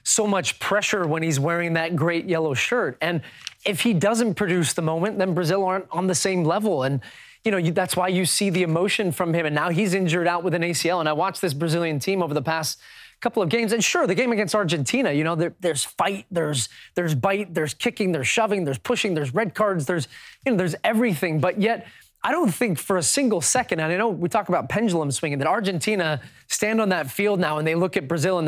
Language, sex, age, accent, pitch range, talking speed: English, male, 20-39, American, 165-205 Hz, 240 wpm